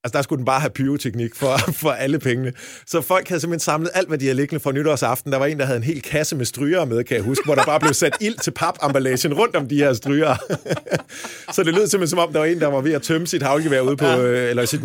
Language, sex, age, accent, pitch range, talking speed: Danish, male, 30-49, native, 130-160 Hz, 265 wpm